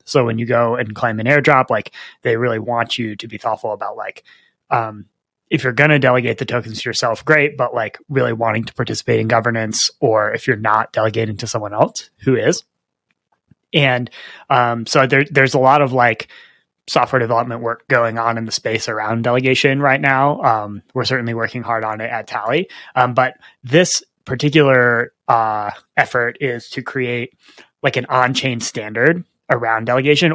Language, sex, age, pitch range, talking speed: English, male, 20-39, 115-140 Hz, 185 wpm